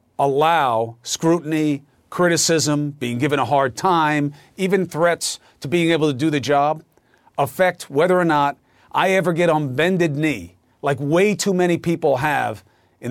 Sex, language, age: male, English, 40-59